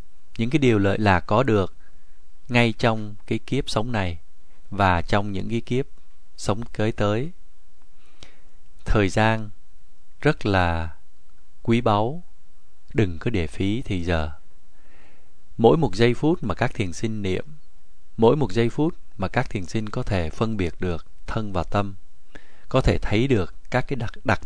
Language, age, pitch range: Vietnamese, 20-39, 80-110 Hz